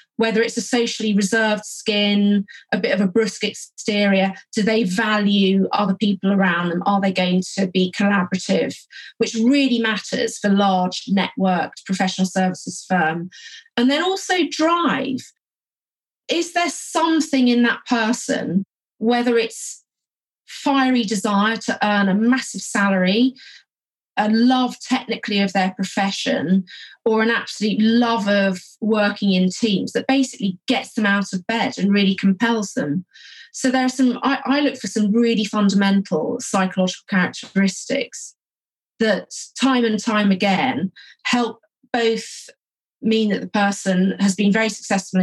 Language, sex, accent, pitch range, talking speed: English, female, British, 195-250 Hz, 140 wpm